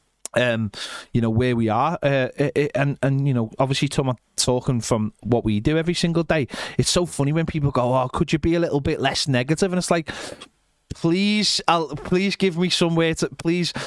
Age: 30-49